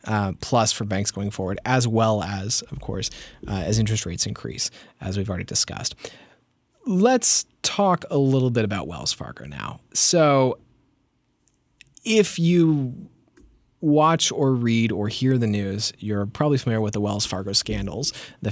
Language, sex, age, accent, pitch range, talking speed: English, male, 30-49, American, 105-140 Hz, 155 wpm